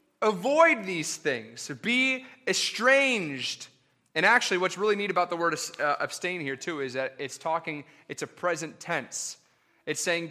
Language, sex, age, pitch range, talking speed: English, male, 30-49, 145-215 Hz, 150 wpm